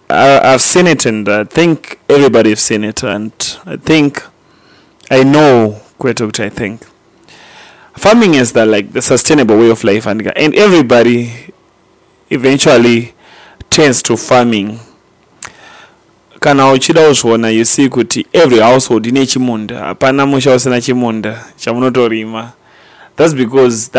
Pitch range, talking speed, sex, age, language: 115-135 Hz, 105 wpm, male, 30-49, English